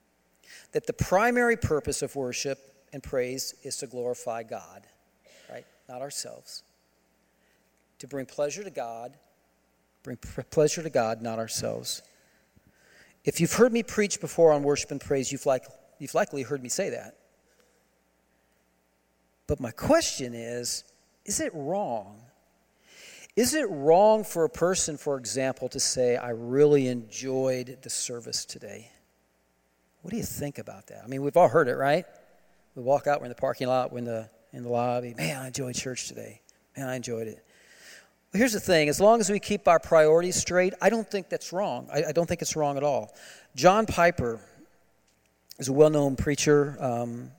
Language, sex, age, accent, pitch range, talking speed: English, male, 40-59, American, 120-155 Hz, 165 wpm